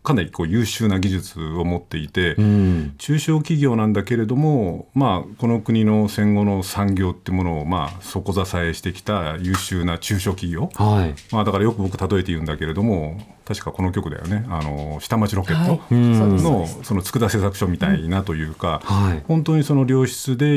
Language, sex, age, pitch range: Japanese, male, 50-69, 90-125 Hz